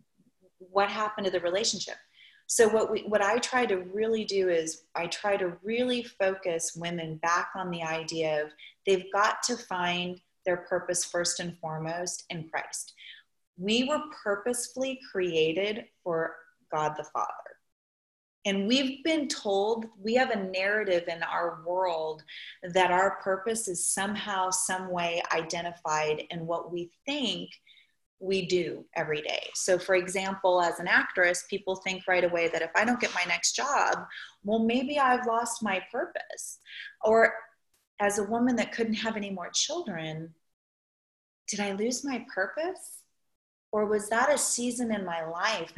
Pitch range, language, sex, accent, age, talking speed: 175-225 Hz, English, female, American, 30-49, 155 wpm